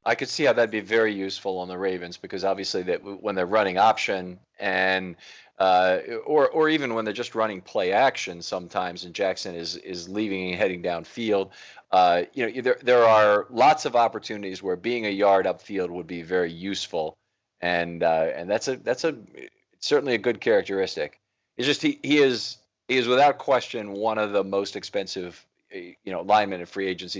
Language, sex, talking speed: English, male, 190 wpm